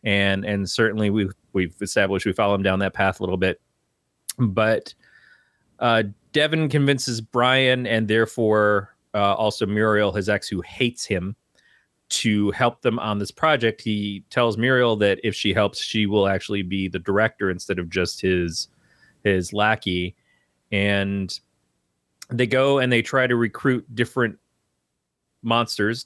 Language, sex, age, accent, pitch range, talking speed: English, male, 30-49, American, 95-120 Hz, 150 wpm